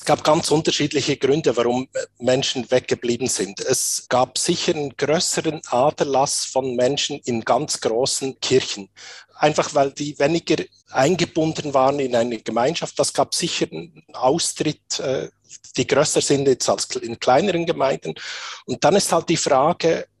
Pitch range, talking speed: 120-160 Hz, 145 wpm